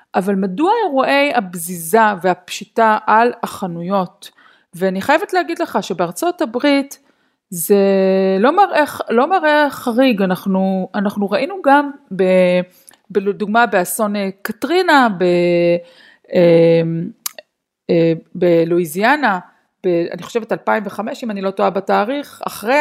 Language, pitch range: Hebrew, 190-280 Hz